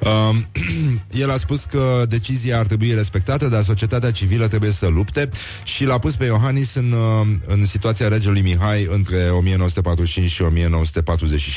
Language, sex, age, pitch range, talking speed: Romanian, male, 30-49, 85-110 Hz, 140 wpm